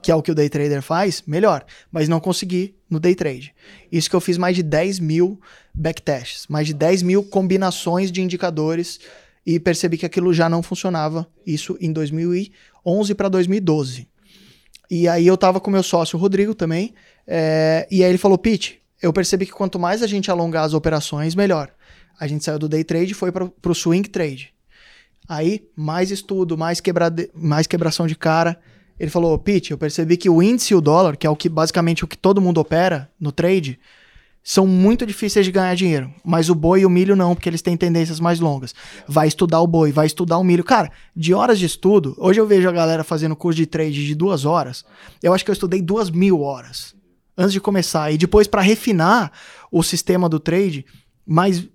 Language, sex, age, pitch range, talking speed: Portuguese, male, 20-39, 160-190 Hz, 205 wpm